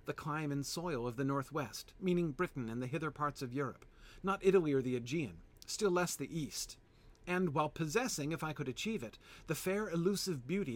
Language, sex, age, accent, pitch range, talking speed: English, male, 40-59, American, 115-180 Hz, 200 wpm